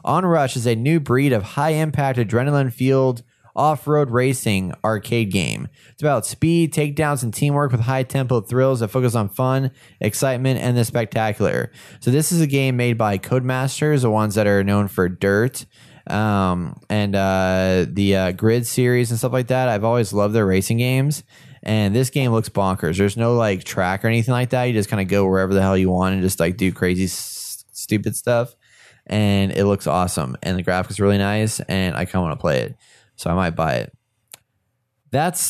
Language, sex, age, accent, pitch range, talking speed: English, male, 20-39, American, 100-140 Hz, 200 wpm